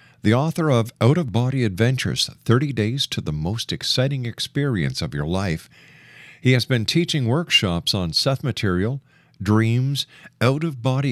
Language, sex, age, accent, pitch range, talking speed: English, male, 50-69, American, 95-130 Hz, 140 wpm